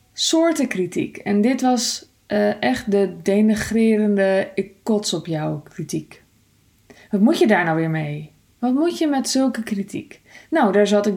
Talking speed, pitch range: 165 wpm, 170-230 Hz